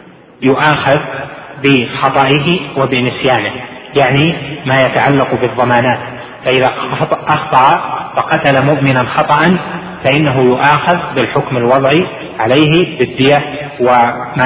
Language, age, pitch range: Arabic, 30-49, 125-150 Hz